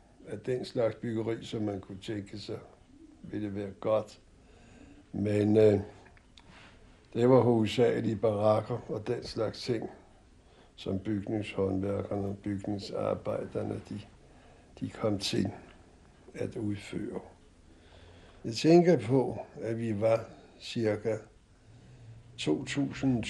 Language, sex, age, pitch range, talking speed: Danish, male, 60-79, 95-115 Hz, 105 wpm